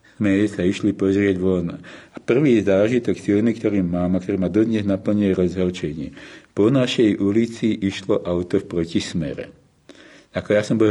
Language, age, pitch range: Slovak, 50-69, 90-100 Hz